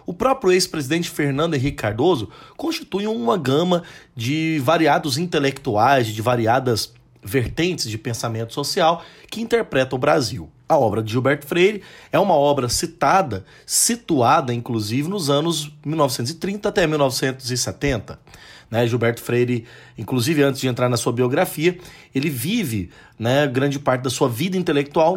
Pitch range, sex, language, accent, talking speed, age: 125-165 Hz, male, Portuguese, Brazilian, 135 wpm, 30-49